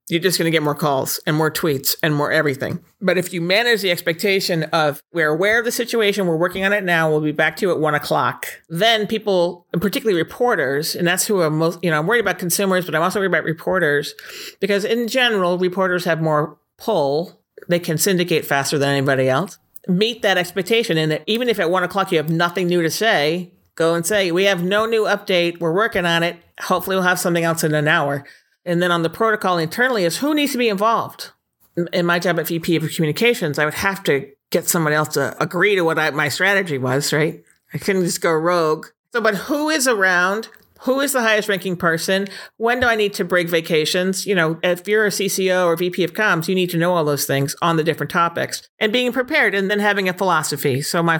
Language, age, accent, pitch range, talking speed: English, 40-59, American, 155-200 Hz, 235 wpm